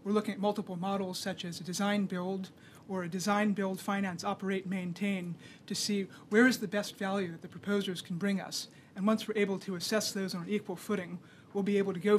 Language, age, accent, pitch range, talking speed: English, 30-49, American, 180-210 Hz, 225 wpm